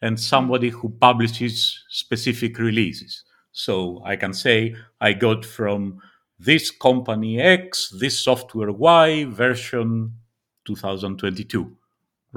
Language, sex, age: English, male, 50-69